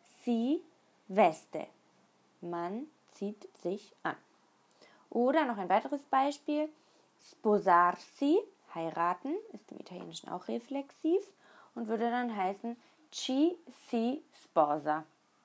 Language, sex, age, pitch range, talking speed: German, female, 20-39, 185-290 Hz, 95 wpm